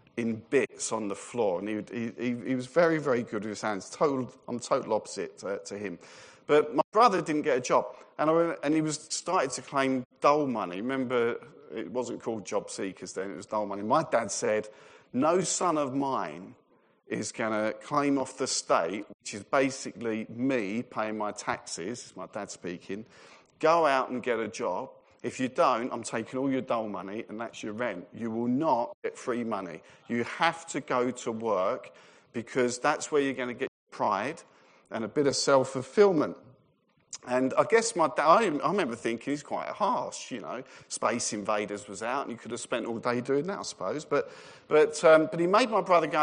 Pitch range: 115-155 Hz